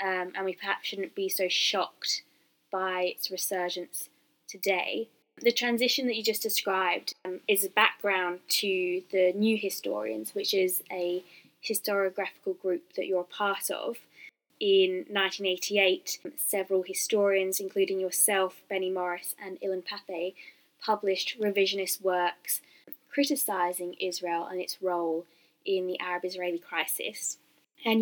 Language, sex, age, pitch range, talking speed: English, female, 20-39, 185-215 Hz, 130 wpm